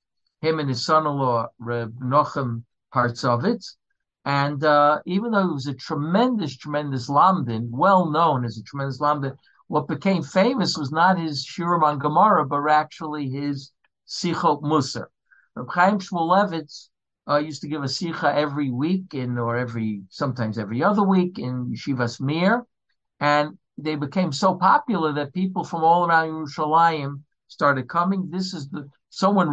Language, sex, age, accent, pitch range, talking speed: English, male, 60-79, American, 140-175 Hz, 150 wpm